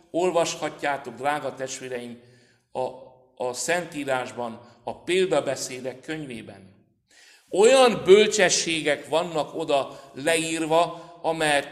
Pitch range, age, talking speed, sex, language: 130-190 Hz, 60-79, 75 wpm, male, Hungarian